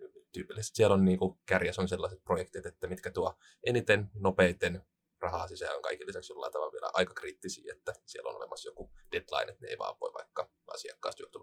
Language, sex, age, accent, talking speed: Finnish, male, 20-39, native, 190 wpm